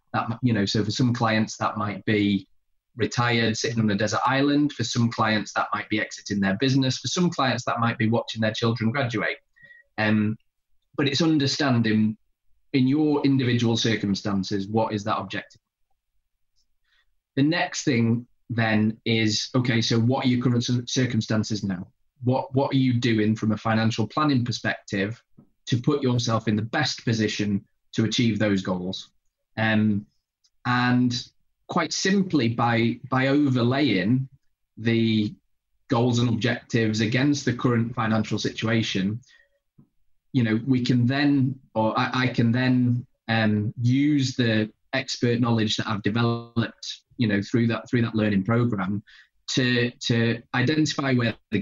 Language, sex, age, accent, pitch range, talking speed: English, male, 20-39, British, 110-130 Hz, 150 wpm